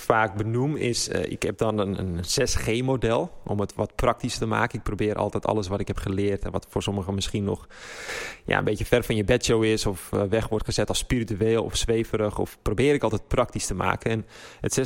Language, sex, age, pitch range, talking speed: Dutch, male, 20-39, 105-120 Hz, 220 wpm